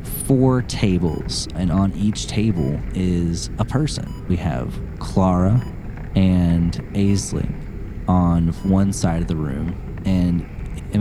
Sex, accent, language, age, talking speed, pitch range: male, American, English, 30-49, 120 wpm, 85-105 Hz